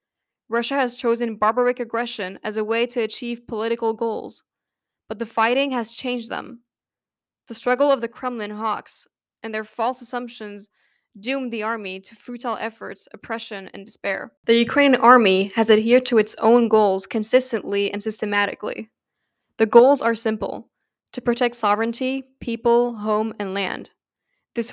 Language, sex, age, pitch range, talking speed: English, female, 10-29, 210-240 Hz, 150 wpm